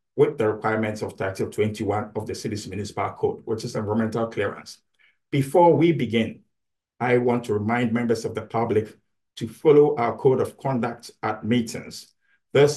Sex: male